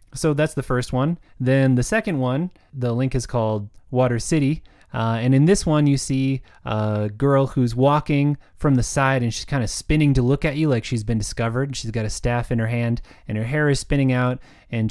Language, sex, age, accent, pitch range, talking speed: English, male, 20-39, American, 115-150 Hz, 225 wpm